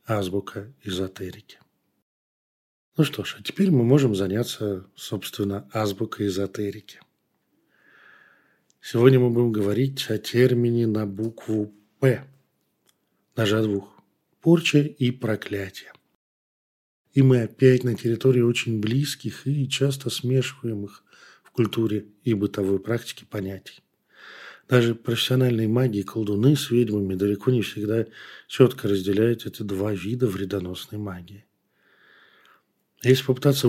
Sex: male